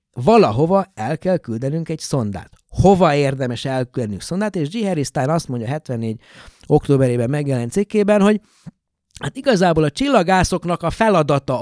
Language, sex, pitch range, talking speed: Hungarian, male, 120-175 Hz, 135 wpm